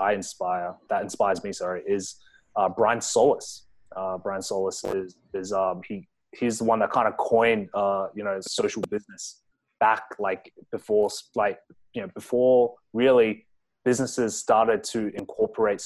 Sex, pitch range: male, 105-145 Hz